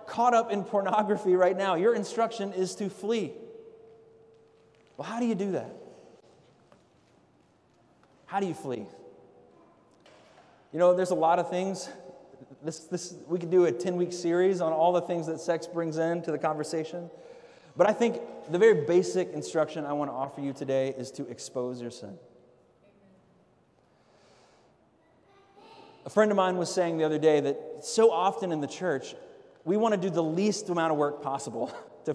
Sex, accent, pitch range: male, American, 160-245 Hz